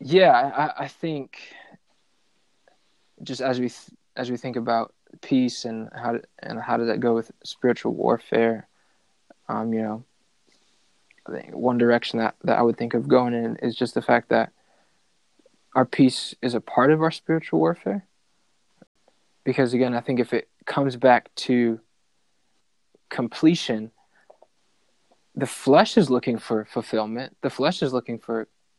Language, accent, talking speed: English, American, 155 wpm